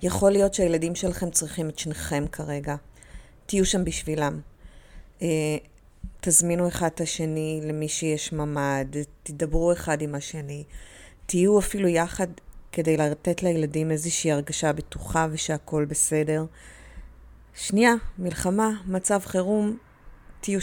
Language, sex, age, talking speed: Hebrew, female, 30-49, 110 wpm